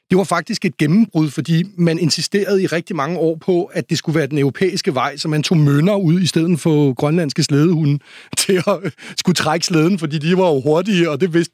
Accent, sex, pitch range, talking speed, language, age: native, male, 155-185 Hz, 225 wpm, Danish, 30-49